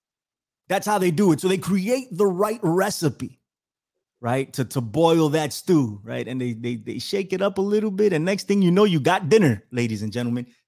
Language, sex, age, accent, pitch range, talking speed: English, male, 30-49, American, 130-205 Hz, 220 wpm